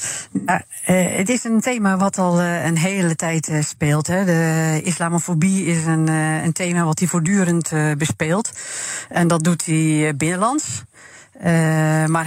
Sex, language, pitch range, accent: female, Dutch, 150-175 Hz, Dutch